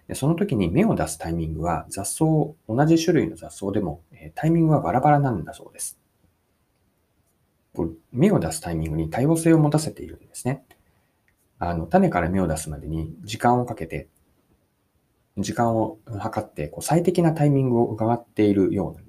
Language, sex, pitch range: Japanese, male, 90-140 Hz